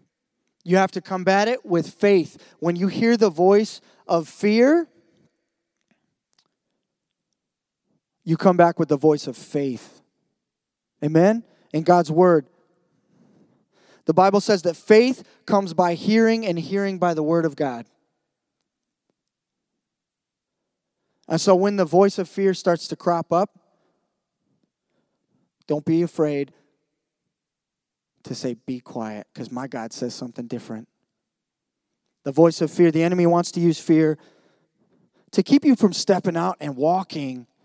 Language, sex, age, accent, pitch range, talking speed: English, male, 20-39, American, 160-205 Hz, 130 wpm